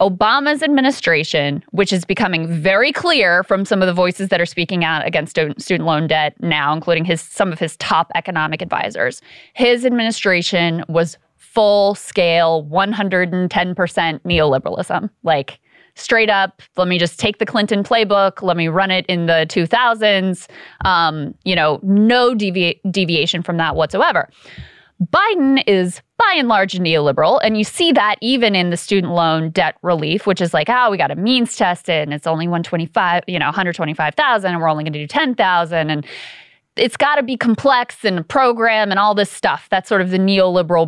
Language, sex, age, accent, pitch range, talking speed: English, female, 20-39, American, 170-220 Hz, 180 wpm